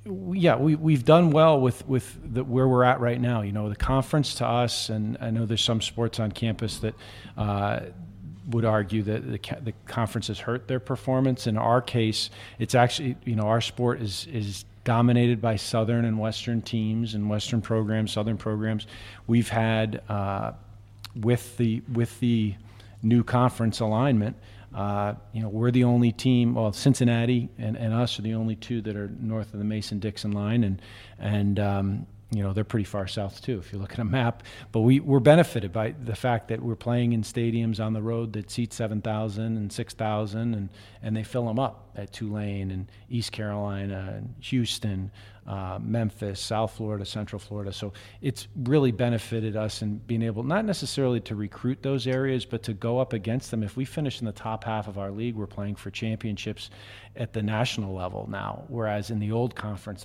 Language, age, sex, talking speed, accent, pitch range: English, 50-69, male, 195 wpm, American, 105-120 Hz